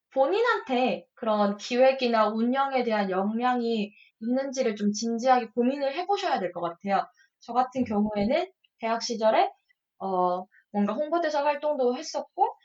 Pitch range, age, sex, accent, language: 205-325 Hz, 20-39, female, native, Korean